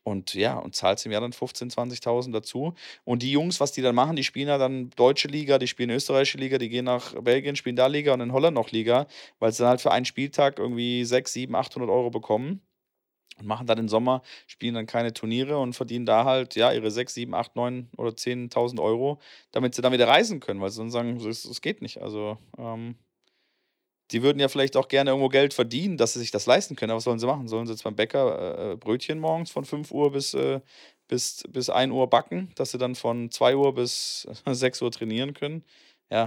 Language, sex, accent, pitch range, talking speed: German, male, German, 115-135 Hz, 230 wpm